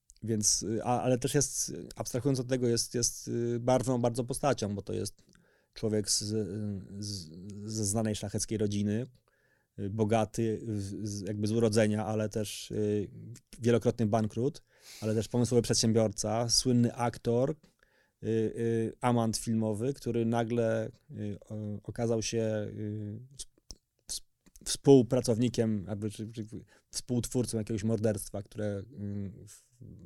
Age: 30-49